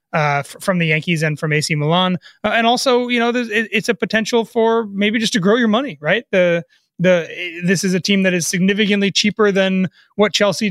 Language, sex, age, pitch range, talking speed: English, male, 30-49, 160-195 Hz, 215 wpm